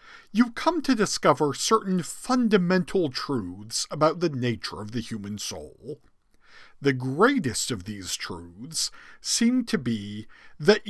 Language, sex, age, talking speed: English, male, 50-69, 125 wpm